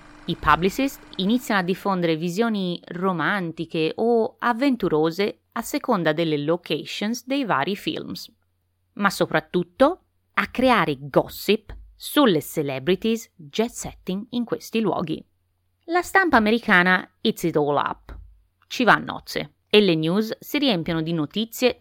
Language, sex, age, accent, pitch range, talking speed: Italian, female, 30-49, native, 150-230 Hz, 125 wpm